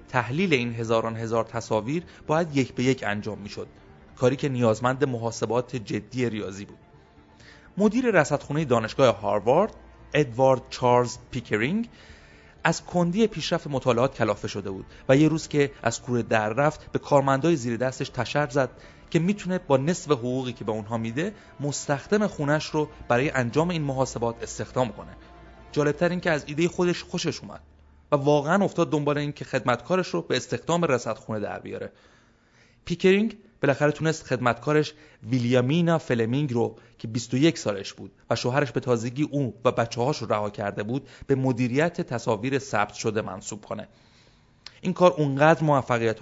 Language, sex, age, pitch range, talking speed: Persian, male, 30-49, 115-150 Hz, 150 wpm